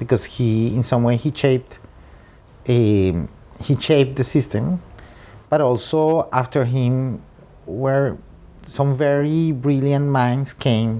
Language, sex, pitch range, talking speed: English, male, 100-120 Hz, 120 wpm